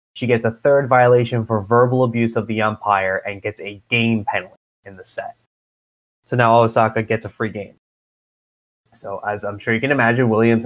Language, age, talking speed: English, 20-39, 190 wpm